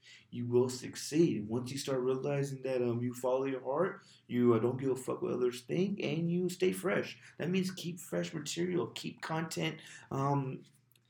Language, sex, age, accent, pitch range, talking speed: English, male, 20-39, American, 120-145 Hz, 185 wpm